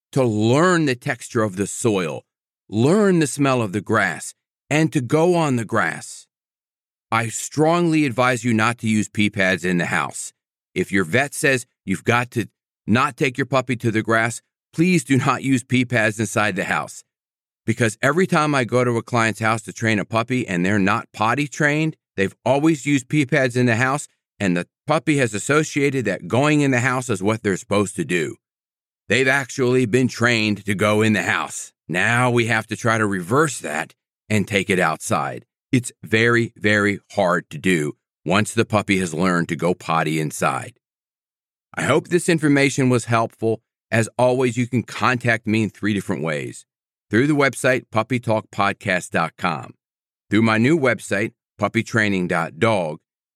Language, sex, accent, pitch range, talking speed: English, male, American, 105-130 Hz, 175 wpm